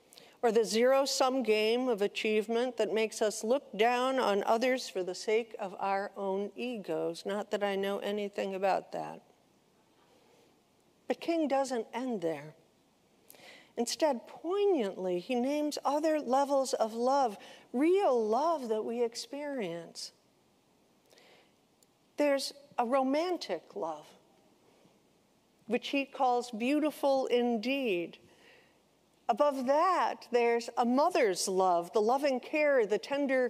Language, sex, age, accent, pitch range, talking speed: English, female, 60-79, American, 220-280 Hz, 115 wpm